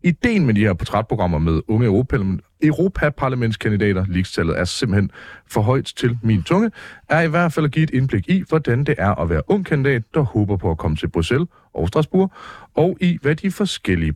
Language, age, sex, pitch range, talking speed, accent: Danish, 40-59, male, 95-150 Hz, 195 wpm, native